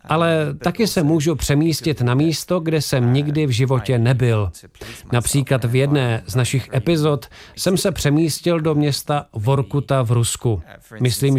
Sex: male